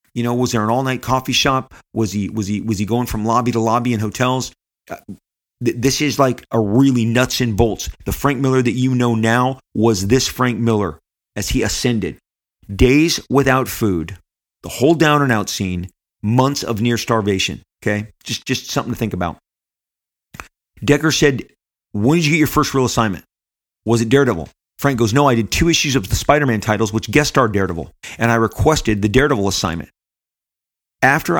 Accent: American